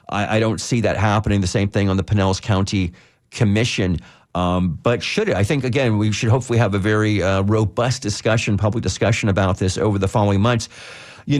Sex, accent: male, American